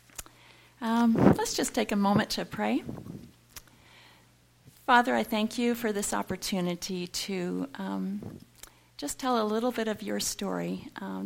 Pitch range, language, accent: 180-230 Hz, English, American